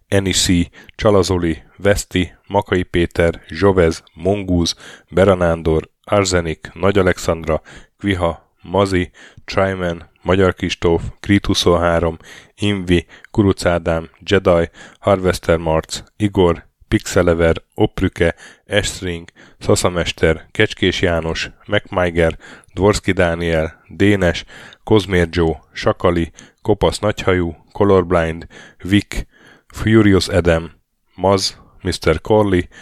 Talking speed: 80 wpm